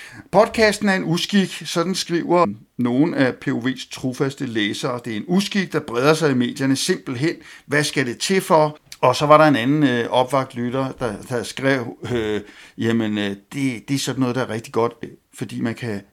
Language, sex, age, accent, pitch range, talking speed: Danish, male, 60-79, native, 125-155 Hz, 200 wpm